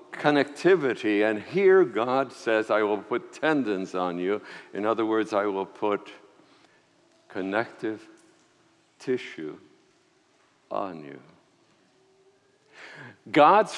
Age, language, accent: 60-79, English, American